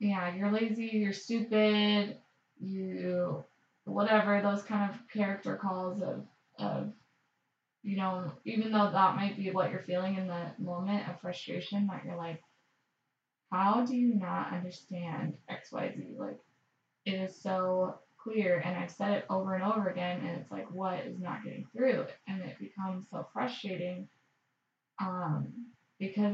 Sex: female